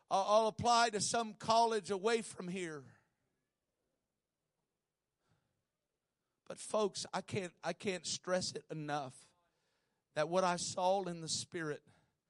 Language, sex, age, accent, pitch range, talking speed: English, male, 50-69, American, 150-190 Hz, 115 wpm